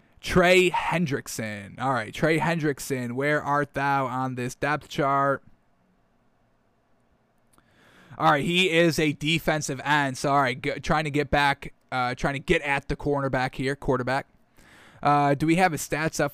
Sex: male